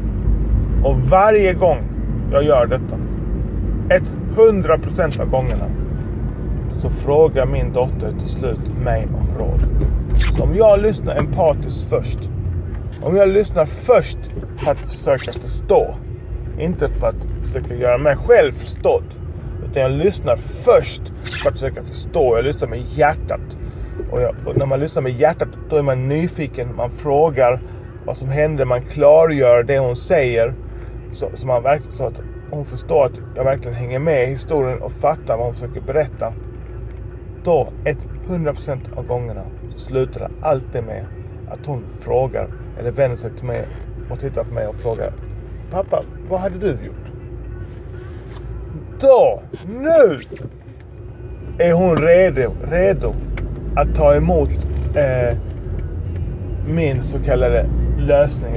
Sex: male